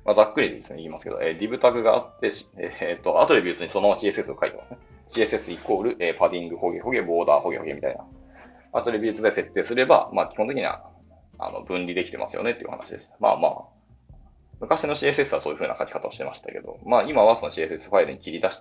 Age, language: 20-39, Japanese